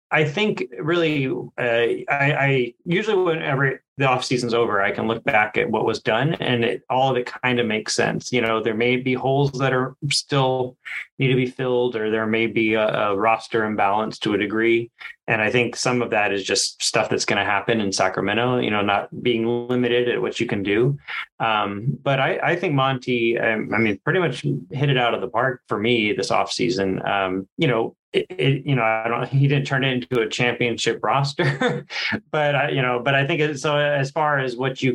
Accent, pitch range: American, 110-135 Hz